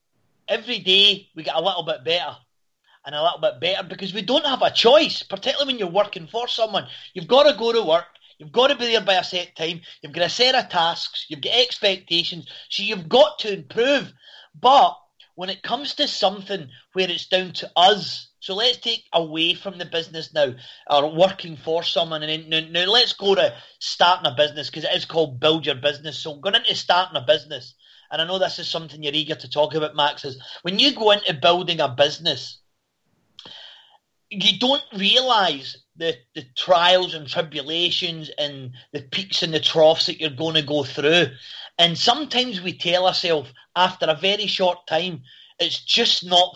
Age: 30-49